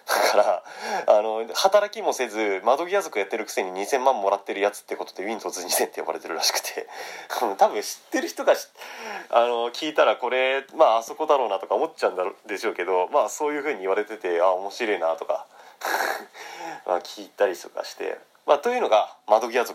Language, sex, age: Japanese, male, 30-49